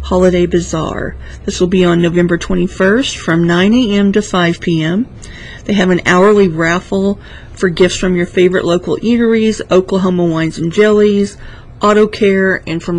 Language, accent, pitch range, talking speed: English, American, 165-195 Hz, 155 wpm